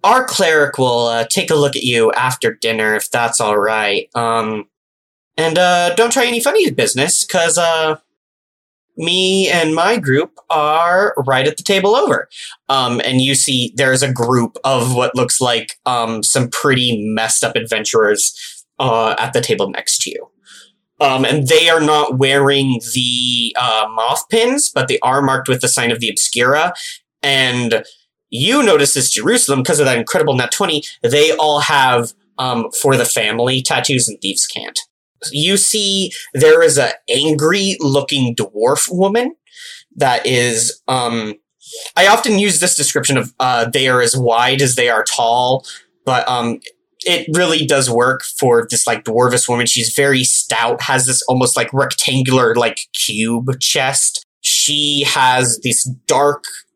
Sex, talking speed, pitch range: male, 160 wpm, 120-165 Hz